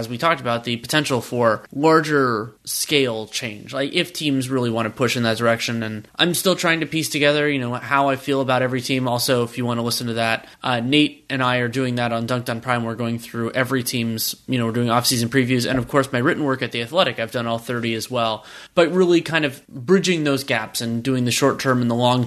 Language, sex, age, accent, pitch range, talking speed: English, male, 20-39, American, 120-145 Hz, 260 wpm